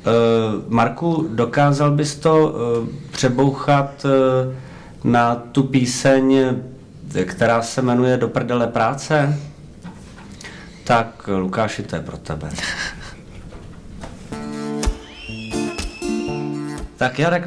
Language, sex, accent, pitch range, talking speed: Czech, male, native, 95-130 Hz, 70 wpm